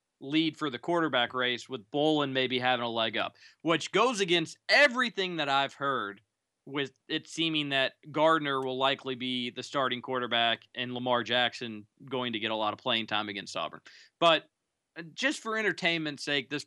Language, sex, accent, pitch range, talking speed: English, male, American, 125-160 Hz, 175 wpm